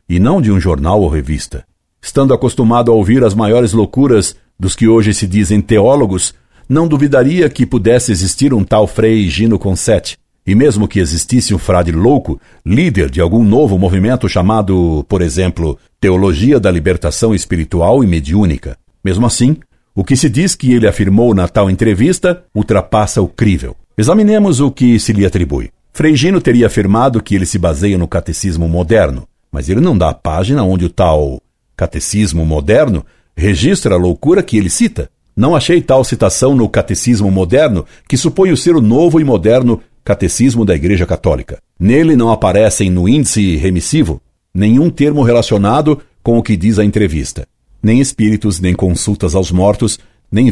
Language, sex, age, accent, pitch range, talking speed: Portuguese, male, 60-79, Brazilian, 90-120 Hz, 165 wpm